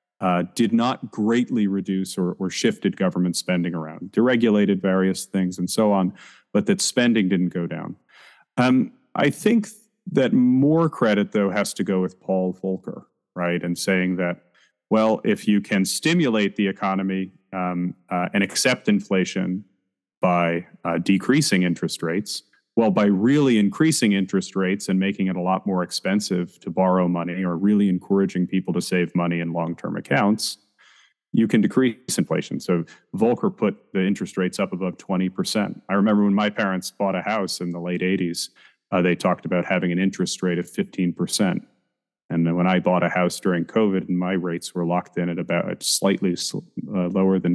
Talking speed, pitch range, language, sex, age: 175 wpm, 90-100 Hz, English, male, 30-49